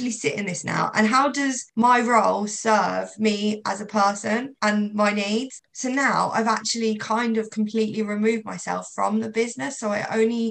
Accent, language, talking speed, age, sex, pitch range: British, English, 185 wpm, 20-39, female, 185-220 Hz